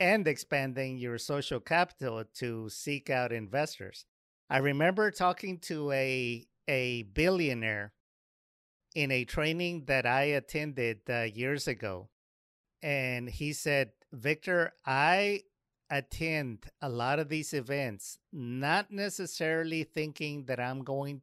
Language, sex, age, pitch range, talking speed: English, male, 50-69, 125-165 Hz, 120 wpm